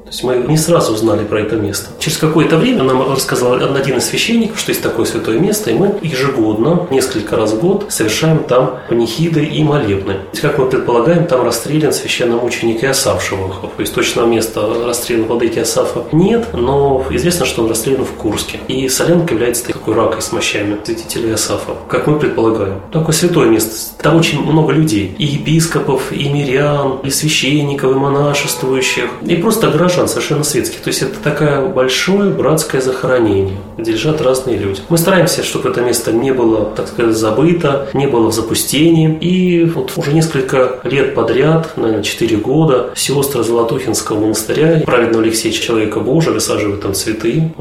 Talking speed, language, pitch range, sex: 170 wpm, Russian, 115-160 Hz, male